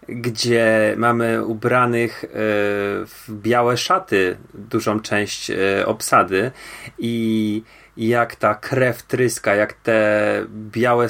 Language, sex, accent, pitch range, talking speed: Polish, male, native, 110-120 Hz, 90 wpm